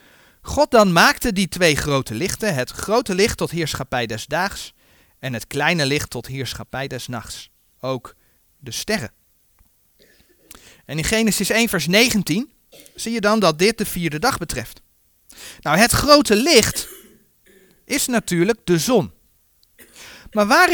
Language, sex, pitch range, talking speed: Dutch, male, 155-240 Hz, 145 wpm